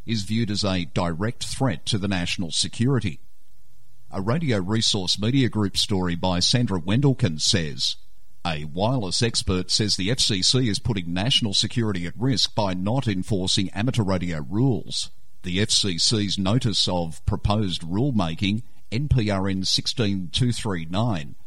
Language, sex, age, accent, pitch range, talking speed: English, male, 50-69, Australian, 95-120 Hz, 130 wpm